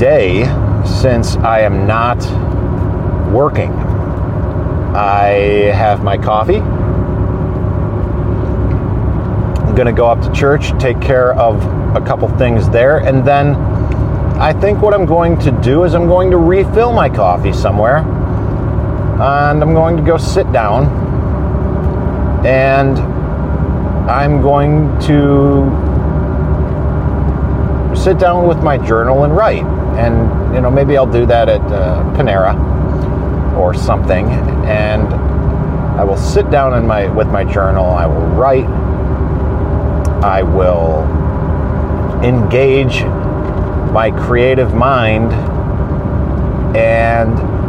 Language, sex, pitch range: English, male, 85-120 Hz